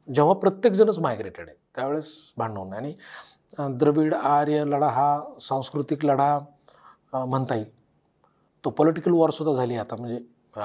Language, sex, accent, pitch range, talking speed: Marathi, male, native, 130-175 Hz, 125 wpm